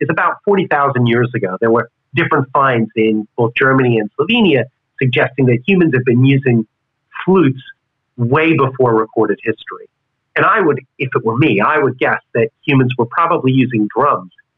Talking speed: 170 wpm